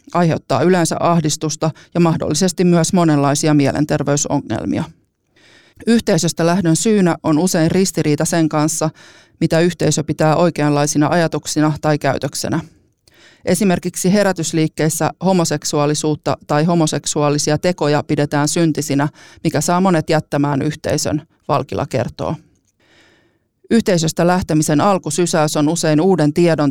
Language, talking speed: Finnish, 100 wpm